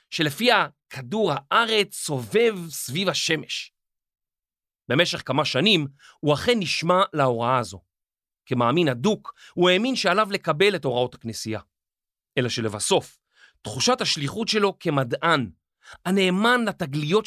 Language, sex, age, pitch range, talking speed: Hebrew, male, 40-59, 130-205 Hz, 110 wpm